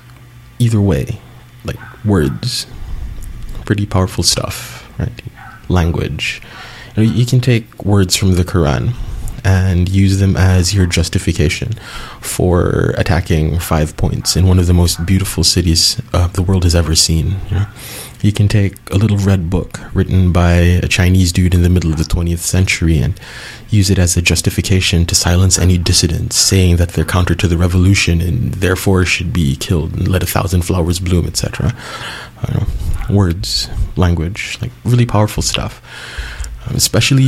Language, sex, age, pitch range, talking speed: English, male, 20-39, 90-110 Hz, 155 wpm